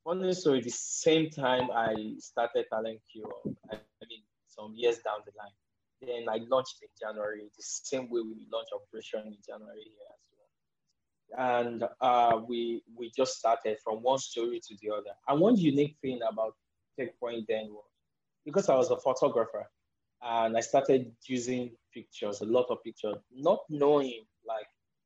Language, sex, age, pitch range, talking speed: English, male, 20-39, 110-140 Hz, 165 wpm